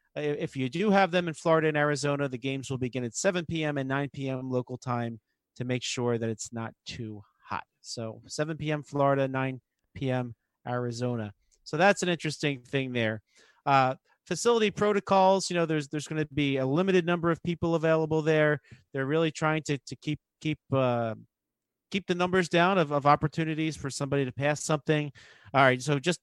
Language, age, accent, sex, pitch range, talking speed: English, 40-59, American, male, 130-165 Hz, 190 wpm